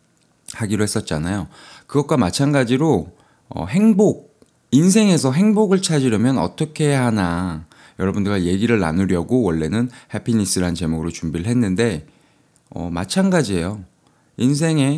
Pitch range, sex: 85-140 Hz, male